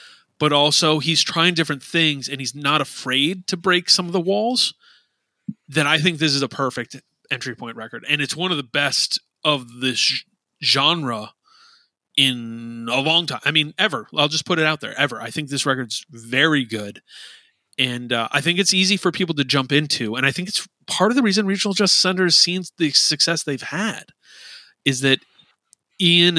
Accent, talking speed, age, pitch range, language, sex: American, 195 wpm, 30-49, 130-170 Hz, English, male